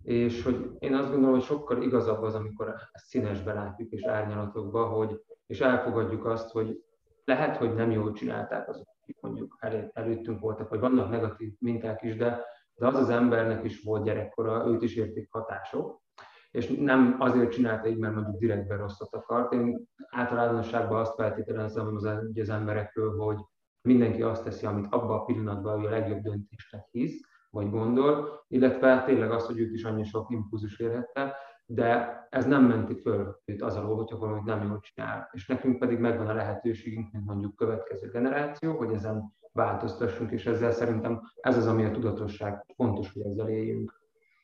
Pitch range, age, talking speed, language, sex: 110-125 Hz, 20-39, 165 wpm, Hungarian, male